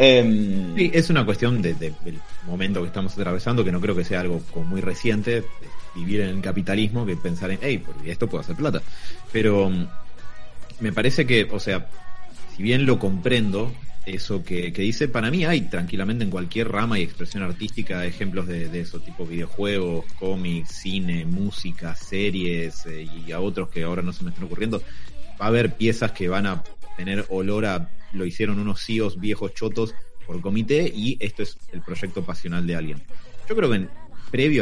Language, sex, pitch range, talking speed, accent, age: Spanish, male, 90-110 Hz, 190 wpm, Argentinian, 30-49